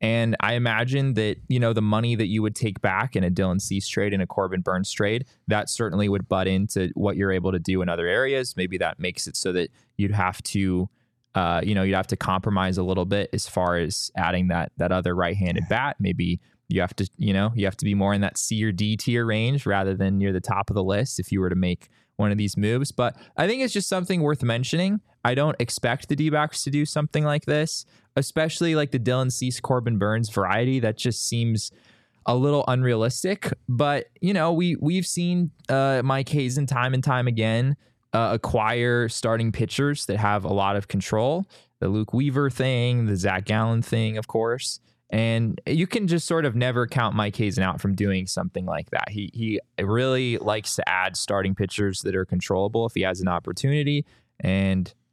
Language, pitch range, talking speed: English, 100-130 Hz, 215 wpm